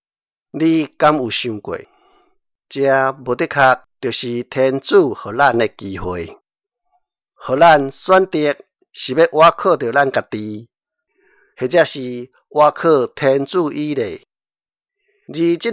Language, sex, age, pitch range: Chinese, male, 50-69, 130-185 Hz